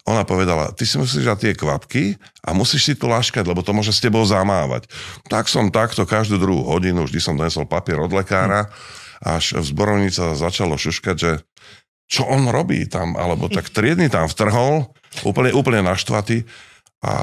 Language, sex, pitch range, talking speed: Slovak, male, 95-135 Hz, 175 wpm